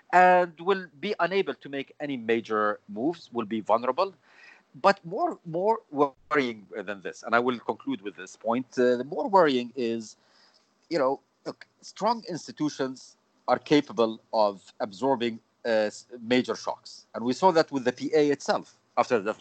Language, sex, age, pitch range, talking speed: English, male, 50-69, 115-170 Hz, 165 wpm